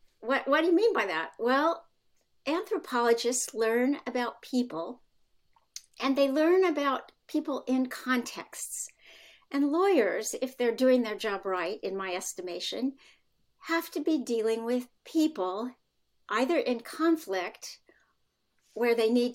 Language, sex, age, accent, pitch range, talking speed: English, female, 60-79, American, 210-285 Hz, 130 wpm